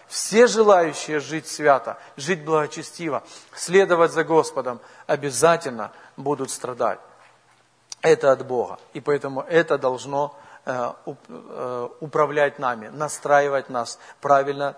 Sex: male